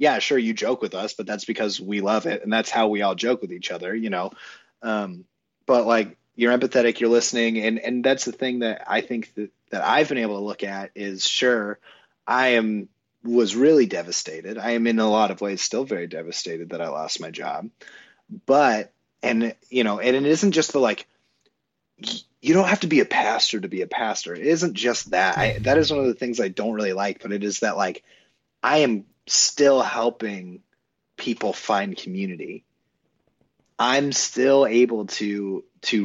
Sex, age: male, 30-49